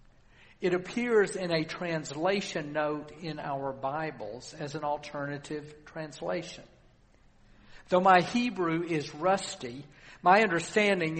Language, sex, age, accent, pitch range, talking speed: English, male, 50-69, American, 150-190 Hz, 105 wpm